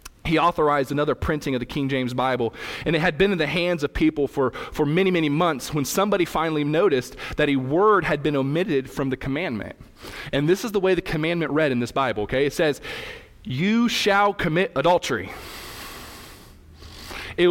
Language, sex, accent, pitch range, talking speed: English, male, American, 130-180 Hz, 190 wpm